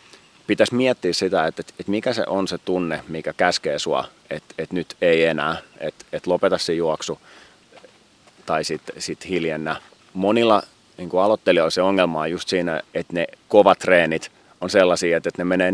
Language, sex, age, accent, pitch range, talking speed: Finnish, male, 30-49, native, 80-95 Hz, 170 wpm